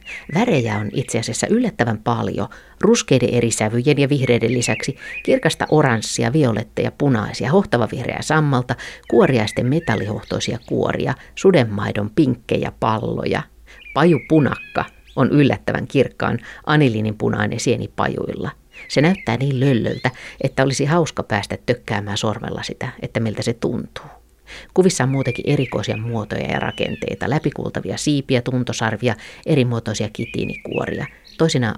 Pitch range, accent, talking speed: 115-145 Hz, native, 115 wpm